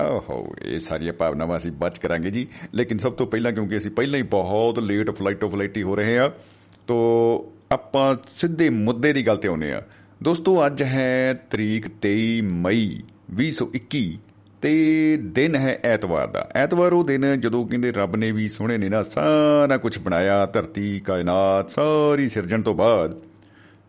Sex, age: male, 50-69